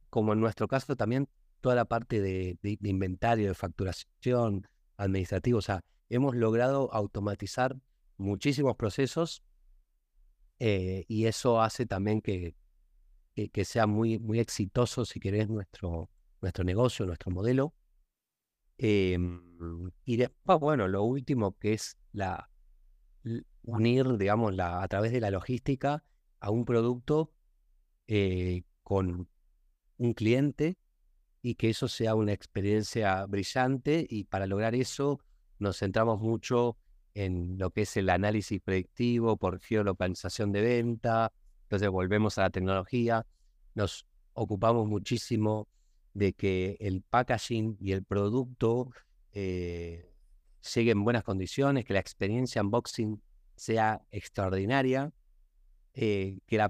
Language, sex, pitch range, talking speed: Spanish, male, 95-120 Hz, 125 wpm